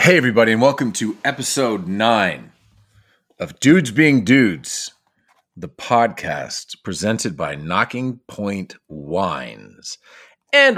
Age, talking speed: 30-49, 105 wpm